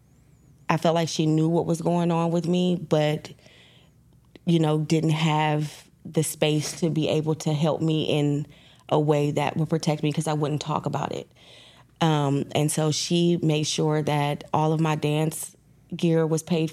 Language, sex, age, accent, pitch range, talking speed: English, female, 20-39, American, 145-160 Hz, 185 wpm